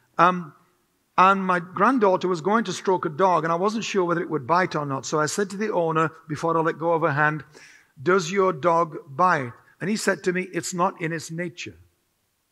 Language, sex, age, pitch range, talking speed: English, male, 60-79, 150-190 Hz, 225 wpm